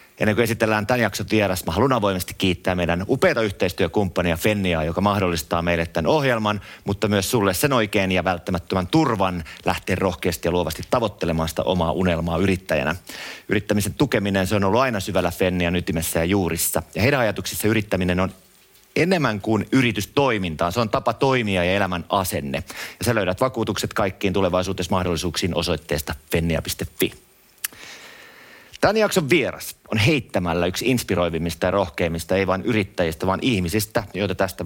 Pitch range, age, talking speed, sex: 90-110 Hz, 30-49, 145 wpm, male